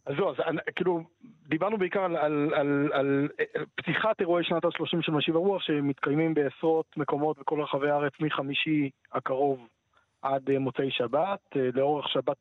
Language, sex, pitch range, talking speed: Hebrew, male, 135-165 Hz, 145 wpm